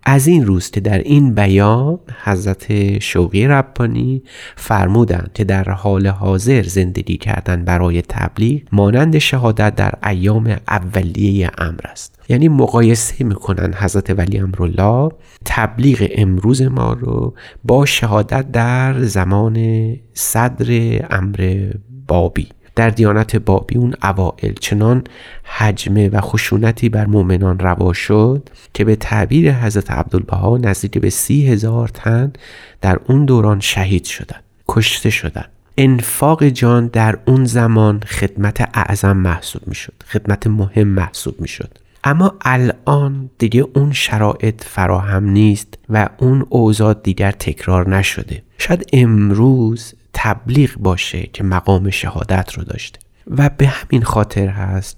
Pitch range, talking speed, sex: 95-120 Hz, 125 wpm, male